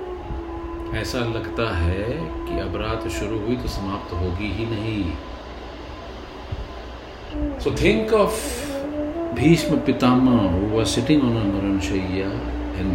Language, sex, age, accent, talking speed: Hindi, male, 50-69, native, 95 wpm